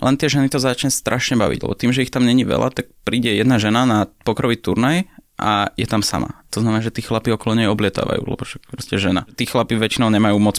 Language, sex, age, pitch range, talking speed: Slovak, male, 20-39, 100-120 Hz, 240 wpm